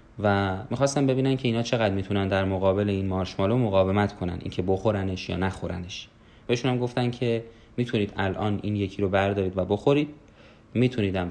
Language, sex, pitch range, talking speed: Persian, male, 95-120 Hz, 155 wpm